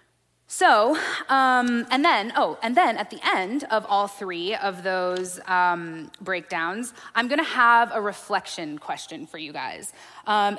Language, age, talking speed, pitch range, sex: English, 20-39, 160 wpm, 185-235 Hz, female